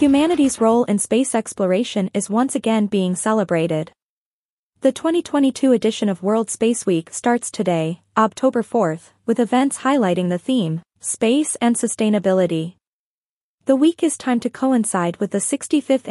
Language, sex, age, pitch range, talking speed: English, female, 20-39, 195-250 Hz, 140 wpm